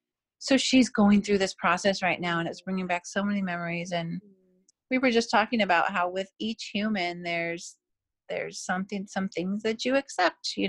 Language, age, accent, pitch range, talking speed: English, 30-49, American, 180-220 Hz, 190 wpm